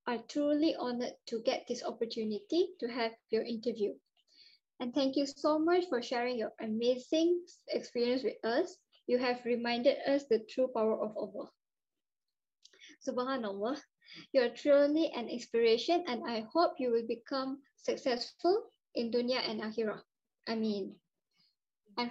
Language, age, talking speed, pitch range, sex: Malay, 20-39, 140 wpm, 235-315 Hz, male